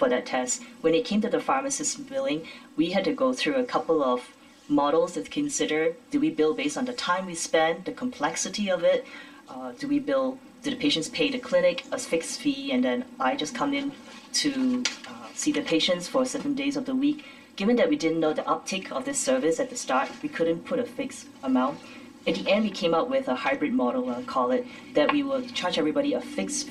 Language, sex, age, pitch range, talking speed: English, female, 30-49, 250-275 Hz, 230 wpm